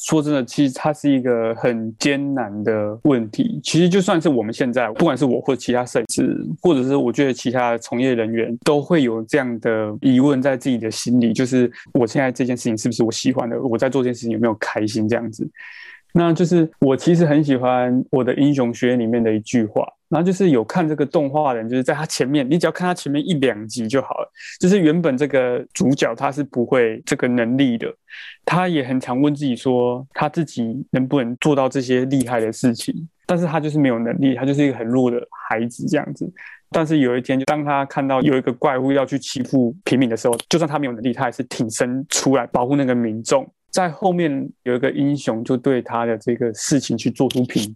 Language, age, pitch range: Chinese, 20-39, 125-150 Hz